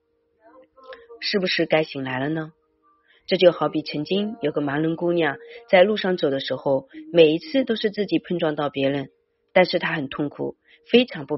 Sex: female